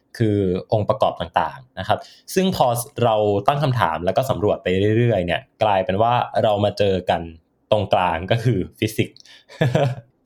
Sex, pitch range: male, 100-125 Hz